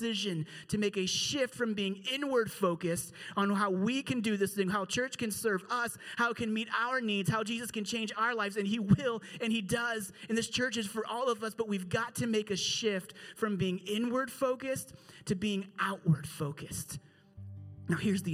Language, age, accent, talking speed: English, 30-49, American, 210 wpm